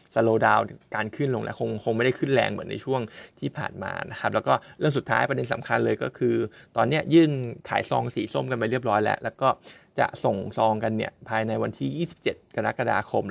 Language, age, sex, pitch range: Thai, 20-39, male, 110-140 Hz